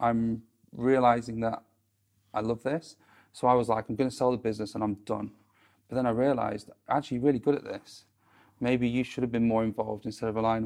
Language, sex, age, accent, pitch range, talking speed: English, male, 30-49, British, 110-120 Hz, 210 wpm